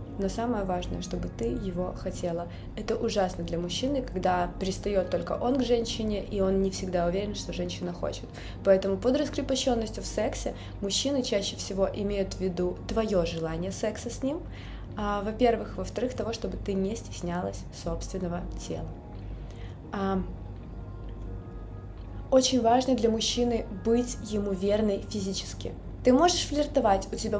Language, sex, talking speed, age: Russian, female, 140 wpm, 20-39